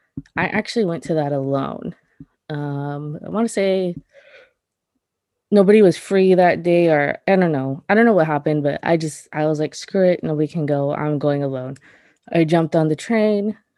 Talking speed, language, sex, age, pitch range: 190 wpm, English, female, 20-39, 145-185 Hz